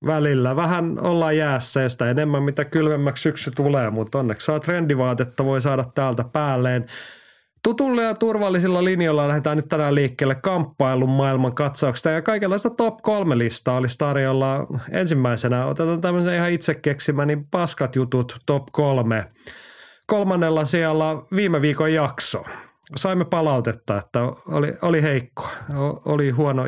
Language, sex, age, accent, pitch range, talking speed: Finnish, male, 30-49, native, 125-160 Hz, 135 wpm